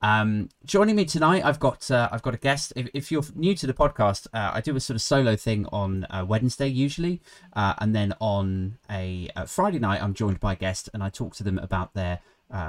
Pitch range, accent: 95-125 Hz, British